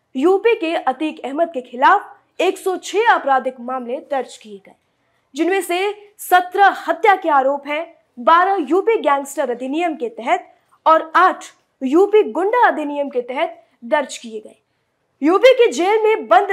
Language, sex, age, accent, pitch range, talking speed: Hindi, female, 20-39, native, 275-360 Hz, 65 wpm